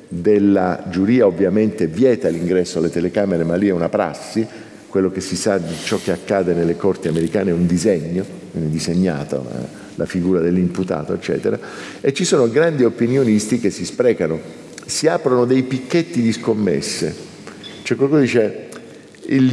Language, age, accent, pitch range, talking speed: Italian, 50-69, native, 85-115 Hz, 155 wpm